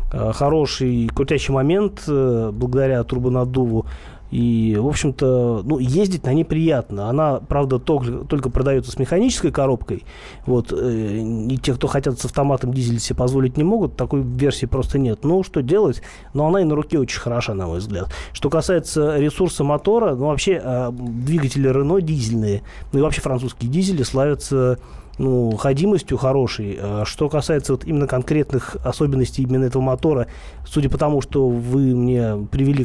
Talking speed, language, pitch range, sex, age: 155 wpm, Russian, 120-145 Hz, male, 30-49